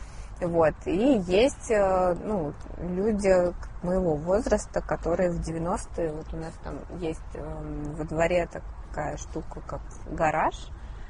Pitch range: 160-185 Hz